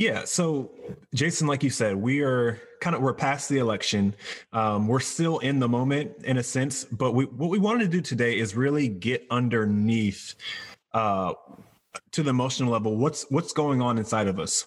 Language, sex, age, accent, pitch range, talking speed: English, male, 20-39, American, 110-130 Hz, 190 wpm